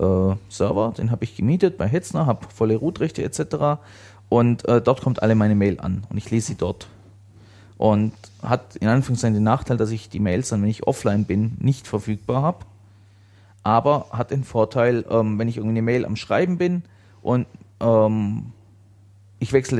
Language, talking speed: German, 175 wpm